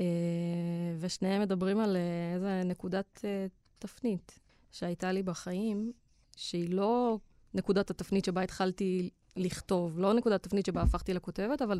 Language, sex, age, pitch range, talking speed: Hebrew, female, 20-39, 175-195 Hz, 115 wpm